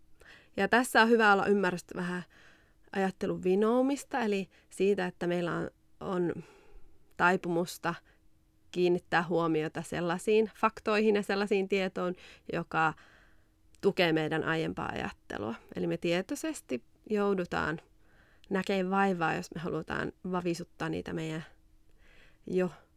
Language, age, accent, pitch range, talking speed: Finnish, 30-49, native, 170-200 Hz, 105 wpm